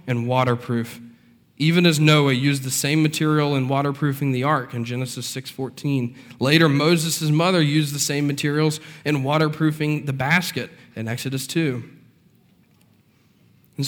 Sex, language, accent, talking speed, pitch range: male, English, American, 135 wpm, 130-155 Hz